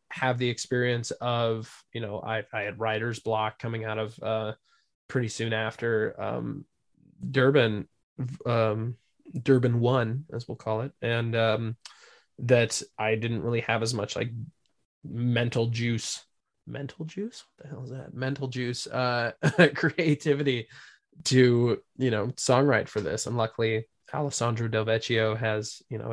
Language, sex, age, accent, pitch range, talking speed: English, male, 20-39, American, 110-125 Hz, 145 wpm